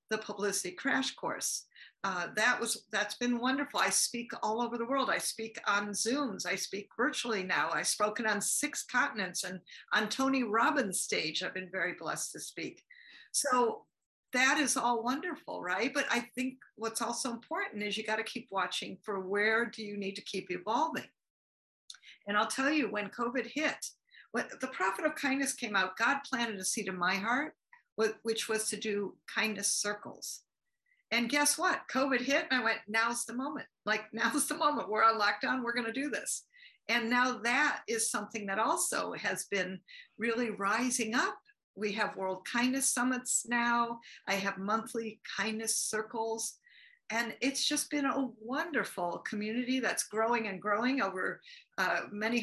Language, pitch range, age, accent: English, 210-265 Hz, 50-69, American